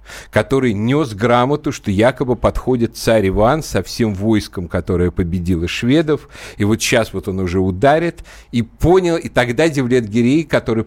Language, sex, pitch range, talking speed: Russian, male, 95-125 Hz, 155 wpm